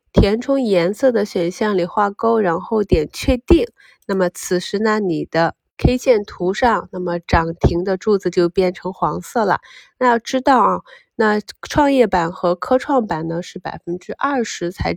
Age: 20-39